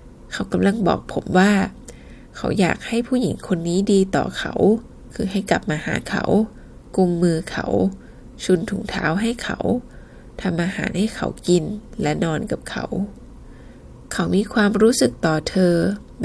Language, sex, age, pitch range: Thai, female, 20-39, 165-210 Hz